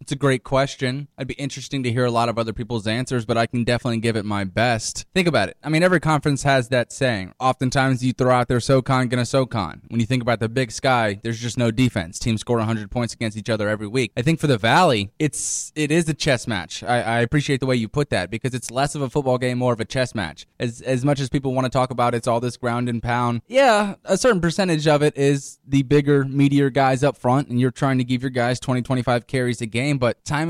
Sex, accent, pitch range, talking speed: male, American, 120-145 Hz, 265 wpm